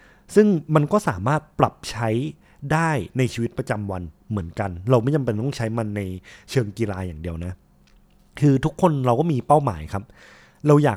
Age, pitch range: 20-39, 100-135 Hz